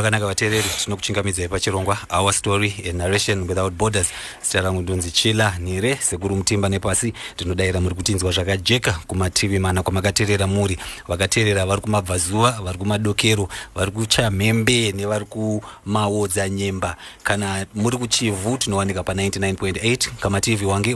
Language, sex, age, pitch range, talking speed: English, male, 30-49, 95-110 Hz, 135 wpm